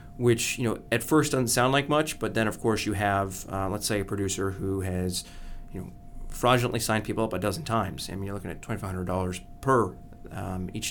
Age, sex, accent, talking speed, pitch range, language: 30-49, male, American, 230 wpm, 95-115 Hz, English